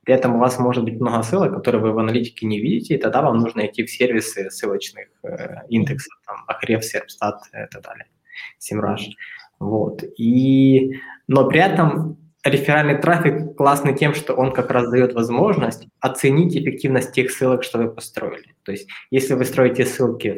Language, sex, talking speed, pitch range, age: Russian, male, 175 wpm, 115-135 Hz, 20-39